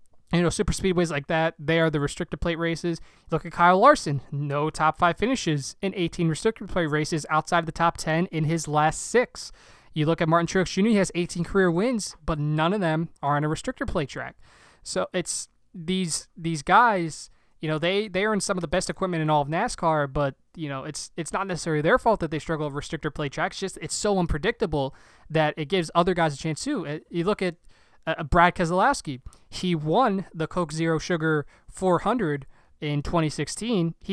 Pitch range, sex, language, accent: 150-180 Hz, male, English, American